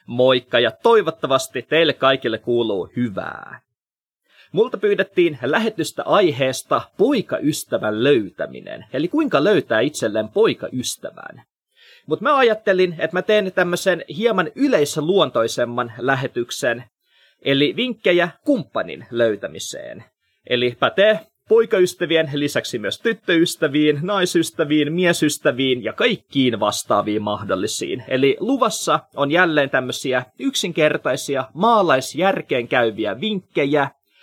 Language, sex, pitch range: Finnish, male, 130-205 Hz